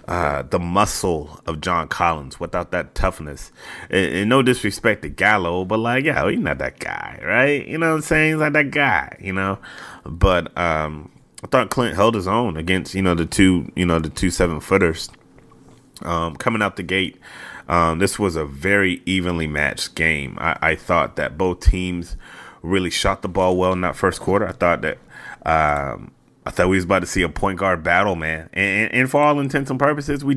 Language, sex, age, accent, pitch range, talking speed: English, male, 30-49, American, 85-110 Hz, 205 wpm